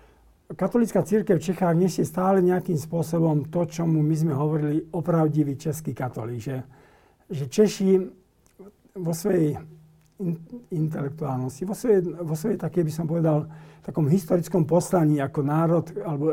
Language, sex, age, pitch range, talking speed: Slovak, male, 50-69, 145-175 Hz, 130 wpm